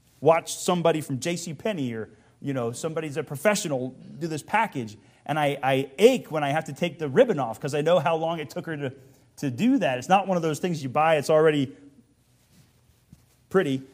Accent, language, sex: American, English, male